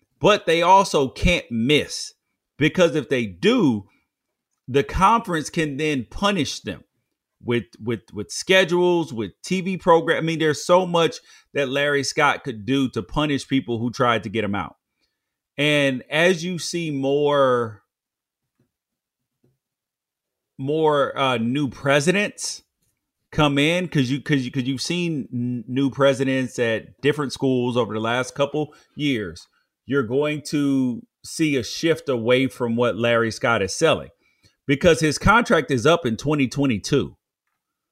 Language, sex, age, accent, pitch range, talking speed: English, male, 30-49, American, 125-165 Hz, 140 wpm